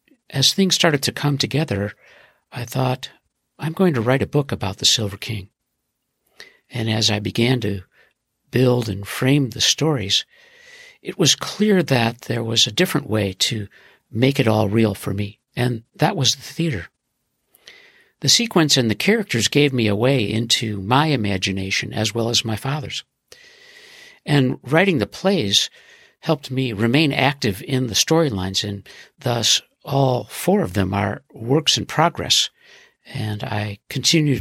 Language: English